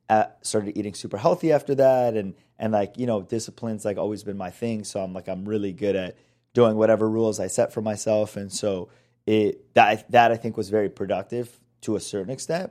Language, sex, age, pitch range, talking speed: English, male, 30-49, 100-115 Hz, 210 wpm